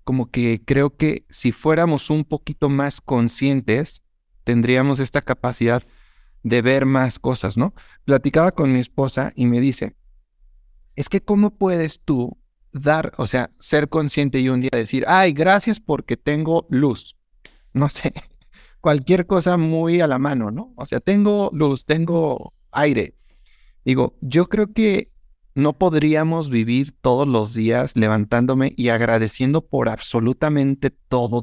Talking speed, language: 145 wpm, Spanish